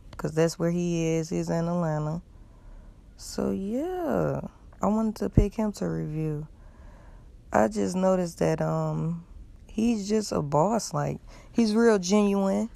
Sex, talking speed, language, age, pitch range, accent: female, 140 wpm, English, 20-39, 150-180 Hz, American